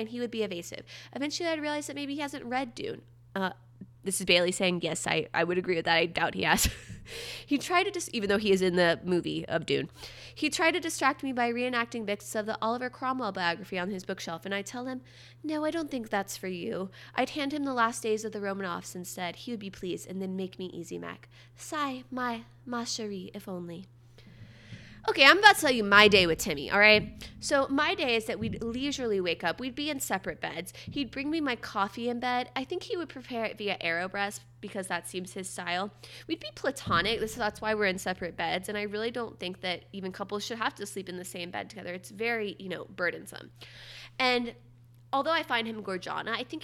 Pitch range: 175-240 Hz